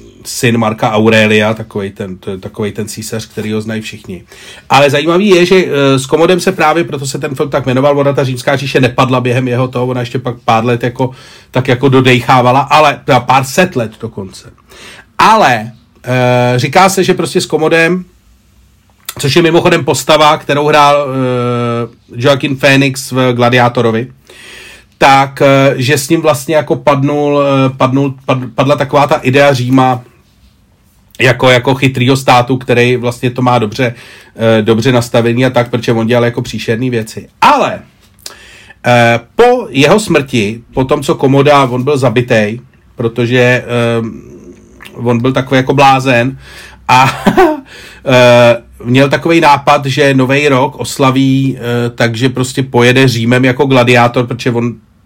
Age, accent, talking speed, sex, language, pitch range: 40-59, native, 155 wpm, male, Czech, 120-145 Hz